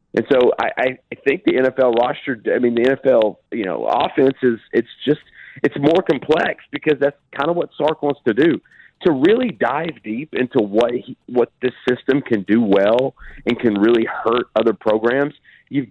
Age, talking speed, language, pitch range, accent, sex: 40-59, 200 wpm, English, 100-140 Hz, American, male